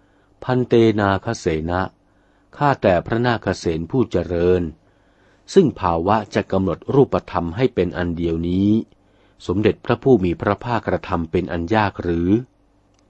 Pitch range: 85-110 Hz